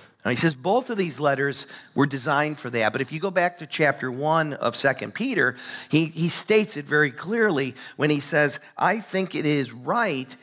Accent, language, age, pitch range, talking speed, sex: American, English, 50-69, 130-170 Hz, 205 wpm, male